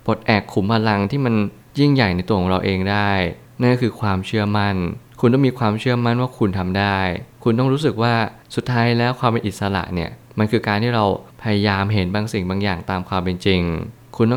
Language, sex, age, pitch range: Thai, male, 20-39, 100-115 Hz